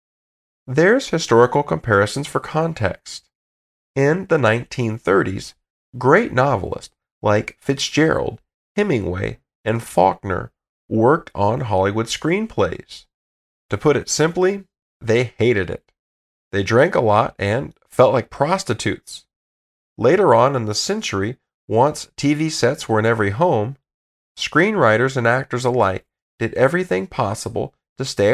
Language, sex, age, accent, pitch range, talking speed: English, male, 40-59, American, 100-140 Hz, 115 wpm